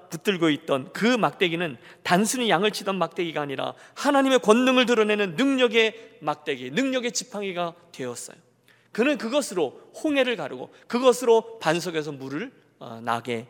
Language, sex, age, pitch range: Korean, male, 40-59, 165-240 Hz